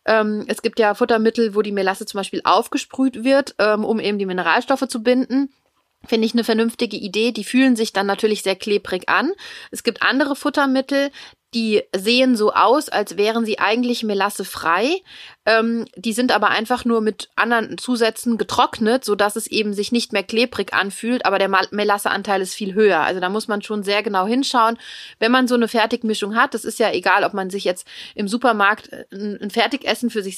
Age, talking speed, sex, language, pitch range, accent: 30-49, 185 wpm, female, German, 190-230 Hz, German